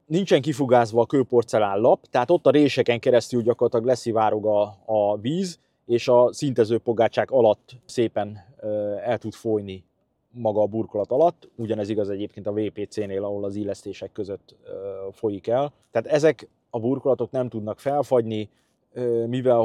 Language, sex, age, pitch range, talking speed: Hungarian, male, 30-49, 105-125 Hz, 145 wpm